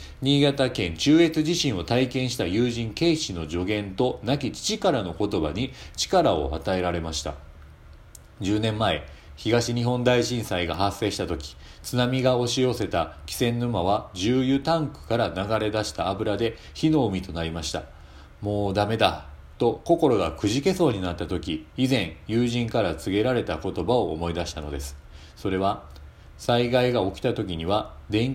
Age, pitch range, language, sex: 40-59, 80-125 Hz, Japanese, male